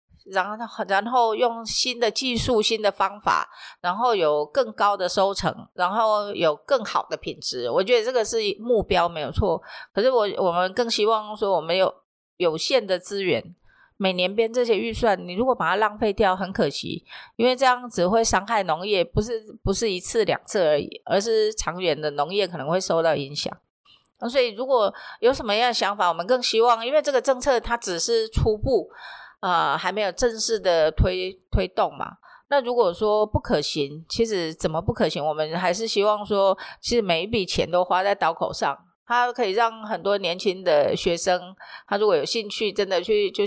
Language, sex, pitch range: Chinese, female, 180-245 Hz